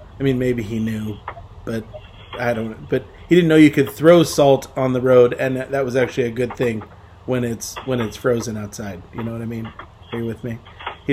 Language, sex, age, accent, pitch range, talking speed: English, male, 40-59, American, 110-160 Hz, 230 wpm